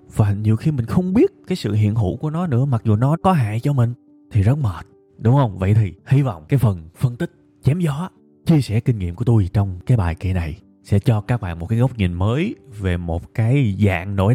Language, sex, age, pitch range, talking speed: Vietnamese, male, 20-39, 95-125 Hz, 250 wpm